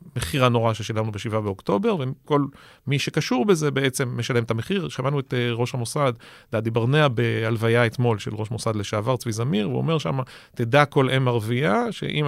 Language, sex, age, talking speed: Hebrew, male, 40-59, 170 wpm